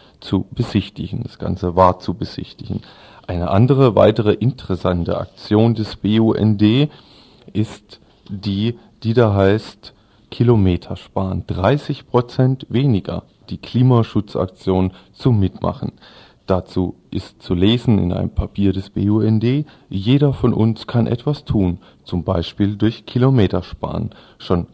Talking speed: 120 wpm